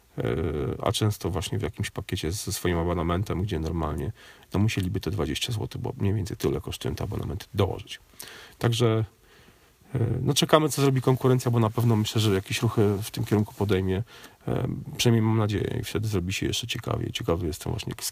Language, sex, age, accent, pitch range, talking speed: Polish, male, 40-59, native, 100-120 Hz, 180 wpm